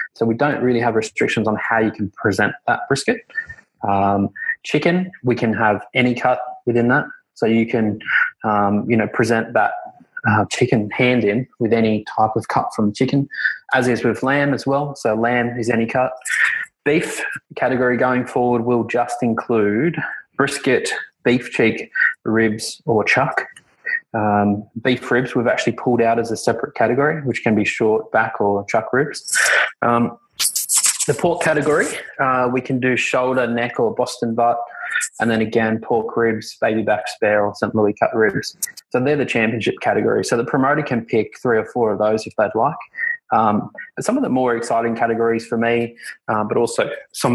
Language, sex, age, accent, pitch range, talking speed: English, male, 20-39, Australian, 110-130 Hz, 180 wpm